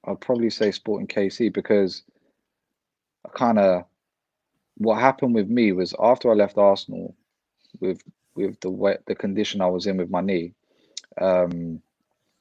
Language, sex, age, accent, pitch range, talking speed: English, male, 20-39, British, 90-105 Hz, 145 wpm